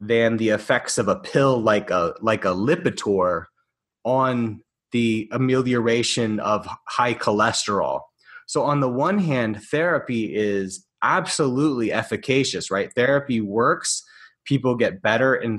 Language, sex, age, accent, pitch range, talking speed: English, male, 20-39, American, 110-140 Hz, 125 wpm